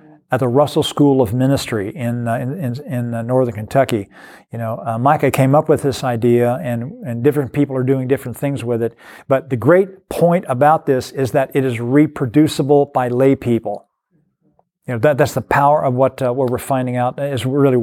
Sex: male